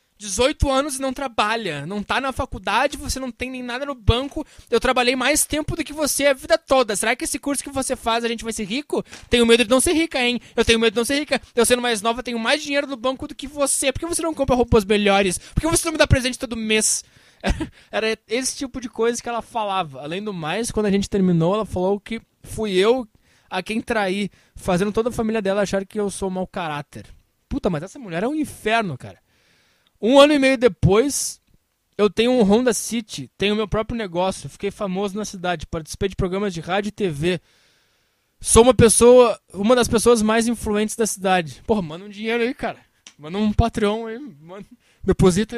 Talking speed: 225 wpm